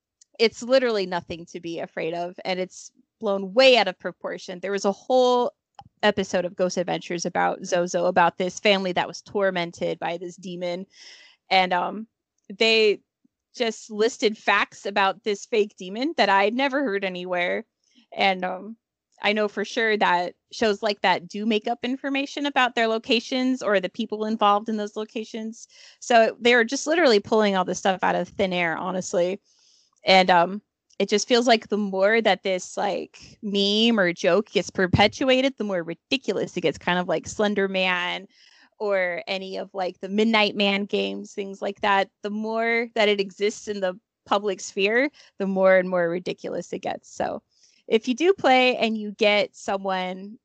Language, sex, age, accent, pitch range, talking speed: English, female, 20-39, American, 185-225 Hz, 175 wpm